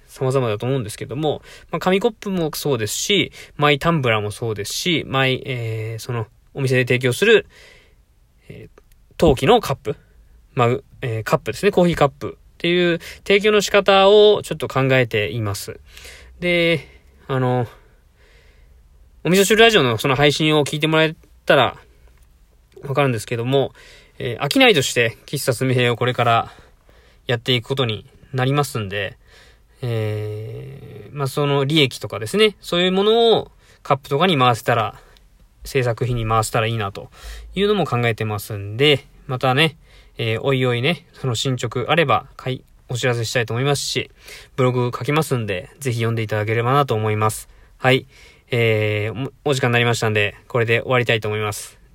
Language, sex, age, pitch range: Japanese, male, 20-39, 115-145 Hz